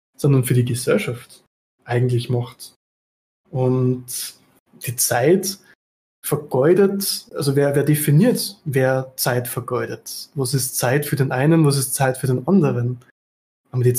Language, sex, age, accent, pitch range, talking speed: German, male, 20-39, German, 130-175 Hz, 135 wpm